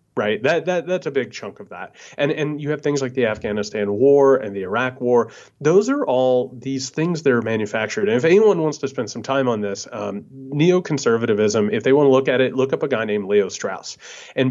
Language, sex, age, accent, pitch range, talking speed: English, male, 30-49, American, 110-155 Hz, 235 wpm